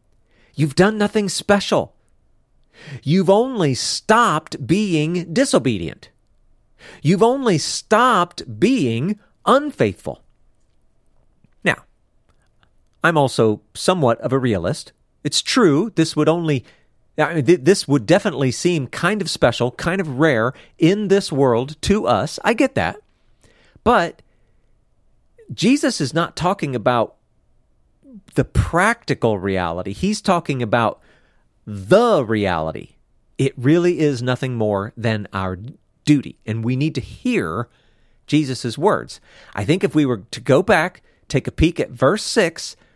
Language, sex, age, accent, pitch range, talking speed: English, male, 40-59, American, 115-175 Hz, 125 wpm